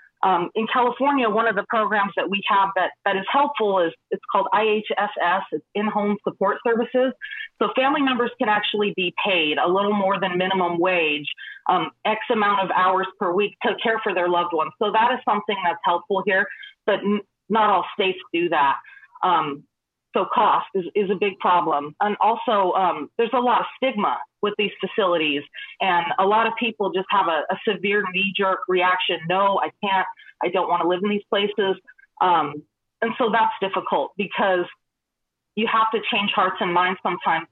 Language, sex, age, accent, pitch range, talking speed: English, female, 30-49, American, 180-215 Hz, 185 wpm